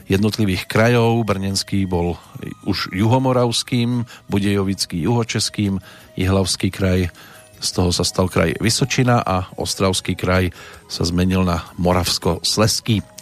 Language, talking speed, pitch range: Slovak, 105 wpm, 95-110 Hz